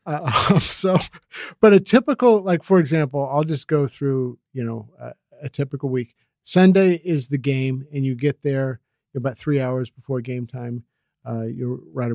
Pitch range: 120-140 Hz